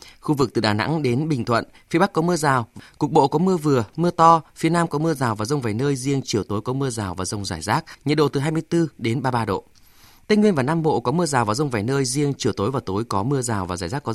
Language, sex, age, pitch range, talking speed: Vietnamese, male, 20-39, 120-165 Hz, 295 wpm